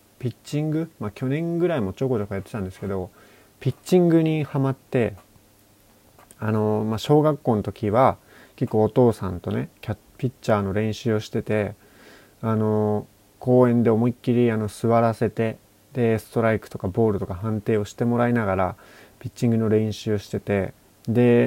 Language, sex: Japanese, male